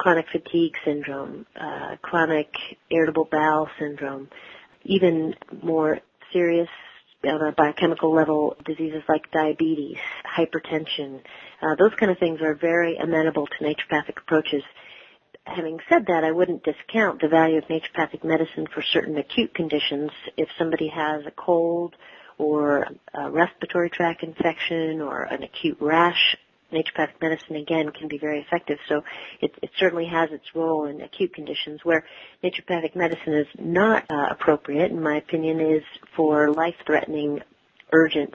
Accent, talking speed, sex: American, 140 wpm, female